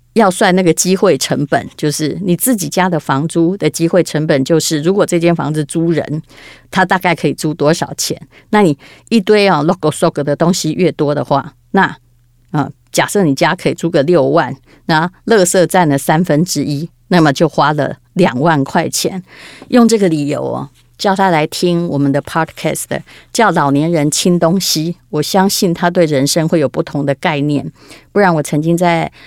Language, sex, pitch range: Chinese, female, 150-185 Hz